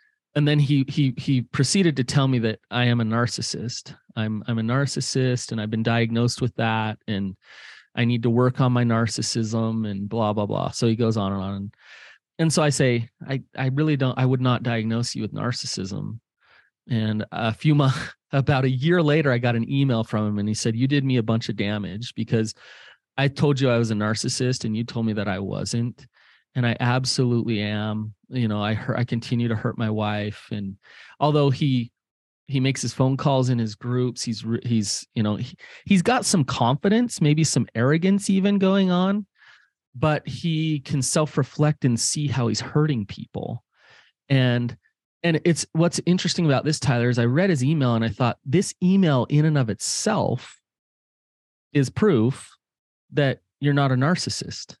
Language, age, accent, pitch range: English, 30-49, American, 115-145 Hz